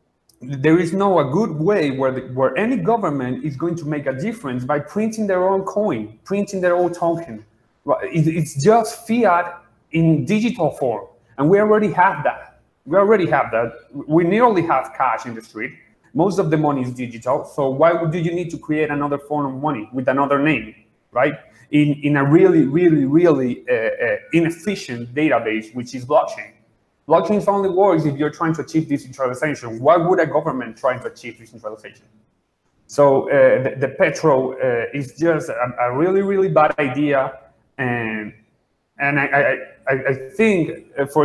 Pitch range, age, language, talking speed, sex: 130-175 Hz, 30-49, English, 175 wpm, male